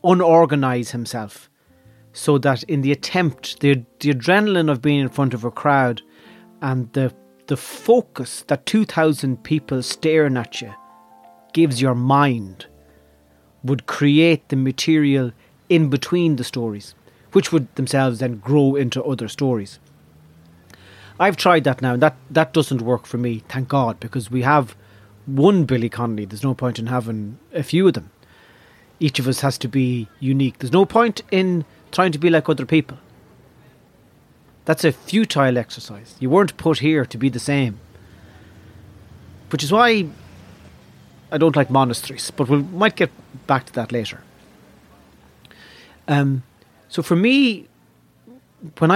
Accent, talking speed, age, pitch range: Irish, 150 wpm, 30-49, 115-155 Hz